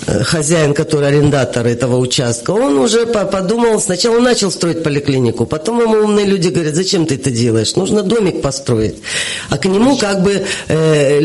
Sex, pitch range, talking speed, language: female, 135-190 Hz, 160 wpm, Russian